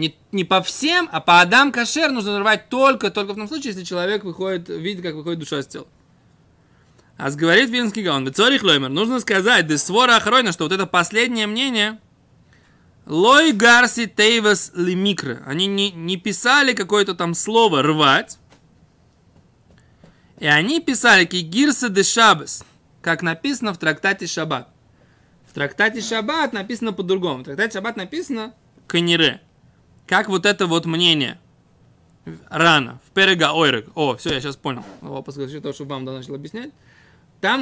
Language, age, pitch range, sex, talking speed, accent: Russian, 20-39, 160-225 Hz, male, 155 wpm, native